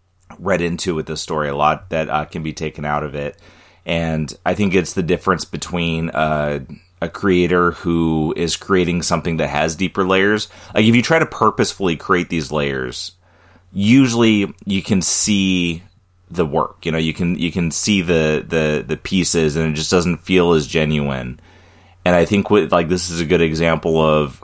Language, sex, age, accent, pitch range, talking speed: English, male, 30-49, American, 80-95 Hz, 190 wpm